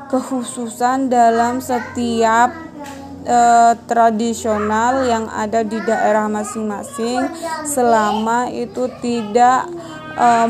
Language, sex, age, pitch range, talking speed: Malay, female, 20-39, 225-255 Hz, 80 wpm